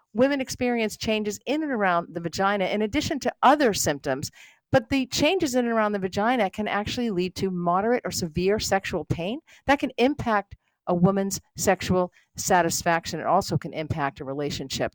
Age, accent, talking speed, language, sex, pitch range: 50-69, American, 175 wpm, English, female, 160-215 Hz